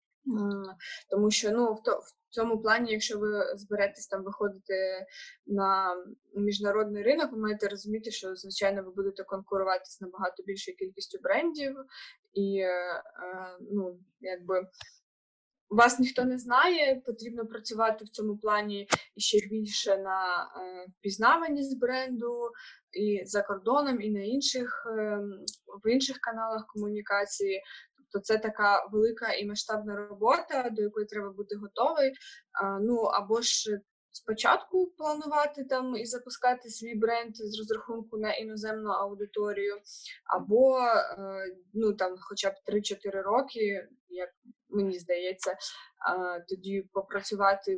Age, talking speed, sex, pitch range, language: 20-39, 125 wpm, female, 195-240 Hz, Ukrainian